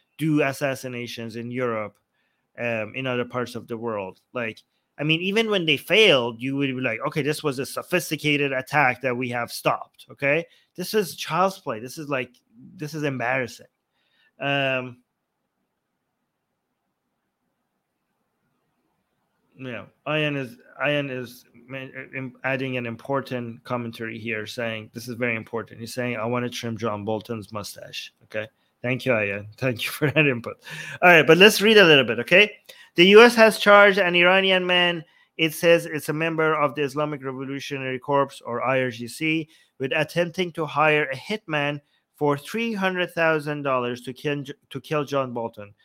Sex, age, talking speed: male, 30-49, 155 wpm